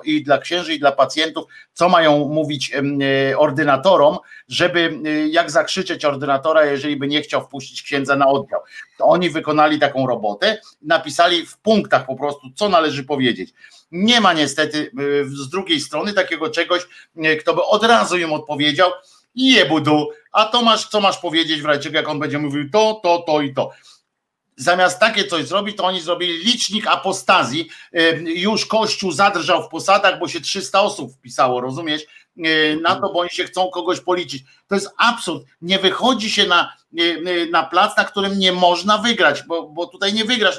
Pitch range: 150-195 Hz